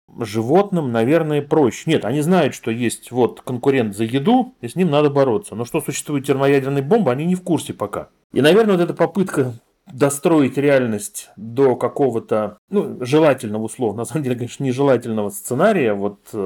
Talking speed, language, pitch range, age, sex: 170 wpm, Russian, 115-145 Hz, 30-49, male